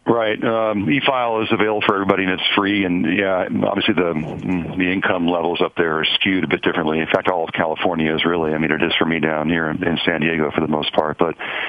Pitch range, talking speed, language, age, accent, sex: 75-90 Hz, 240 wpm, English, 40-59, American, male